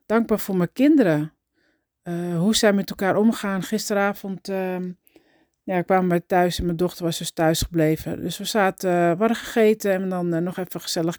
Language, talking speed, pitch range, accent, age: Dutch, 190 wpm, 165-195 Hz, Dutch, 40-59